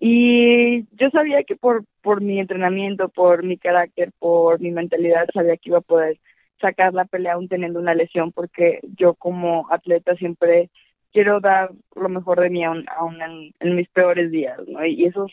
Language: Spanish